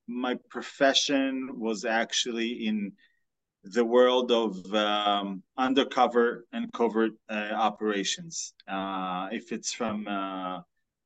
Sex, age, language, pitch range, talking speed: male, 30-49, English, 105-130 Hz, 105 wpm